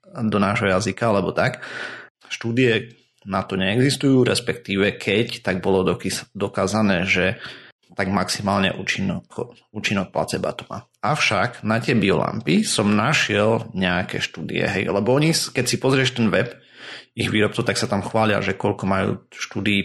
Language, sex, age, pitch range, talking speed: Slovak, male, 30-49, 100-120 Hz, 145 wpm